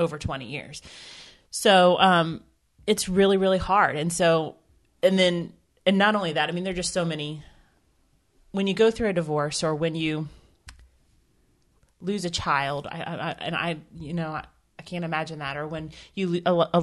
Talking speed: 180 wpm